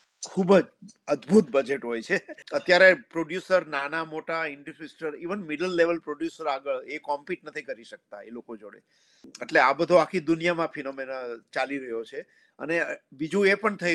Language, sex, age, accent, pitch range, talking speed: Gujarati, male, 50-69, native, 140-180 Hz, 45 wpm